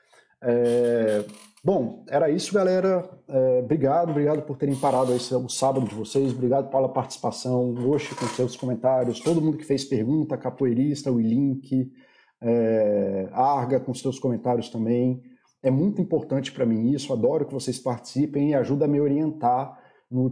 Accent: Brazilian